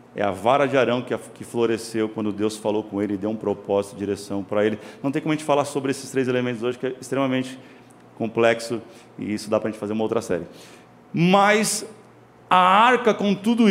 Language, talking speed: Portuguese, 215 wpm